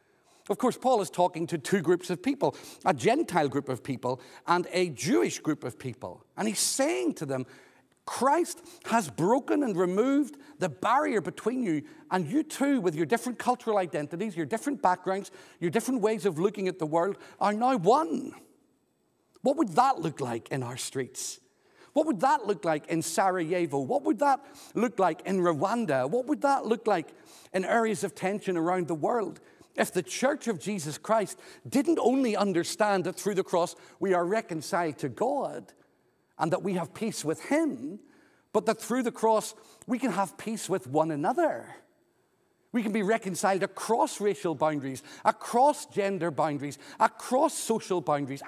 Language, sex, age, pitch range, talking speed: English, male, 50-69, 170-245 Hz, 175 wpm